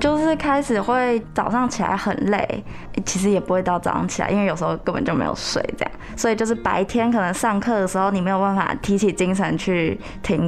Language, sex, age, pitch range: Chinese, female, 20-39, 180-215 Hz